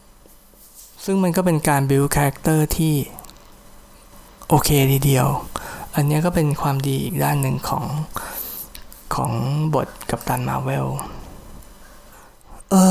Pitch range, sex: 135-170 Hz, male